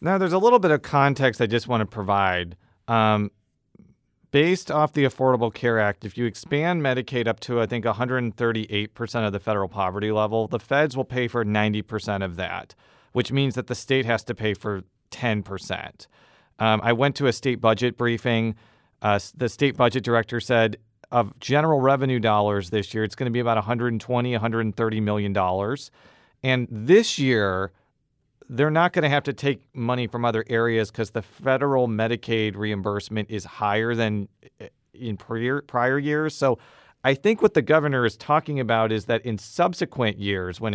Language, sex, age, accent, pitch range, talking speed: English, male, 40-59, American, 105-130 Hz, 175 wpm